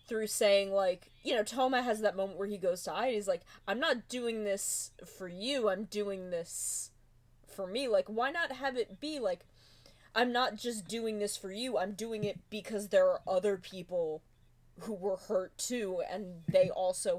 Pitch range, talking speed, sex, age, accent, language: 175-225 Hz, 200 wpm, female, 20-39, American, English